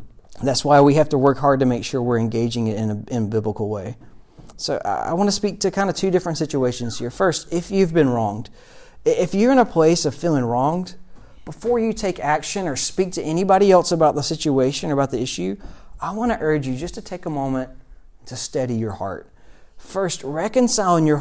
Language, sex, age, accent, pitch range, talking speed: English, male, 40-59, American, 125-185 Hz, 220 wpm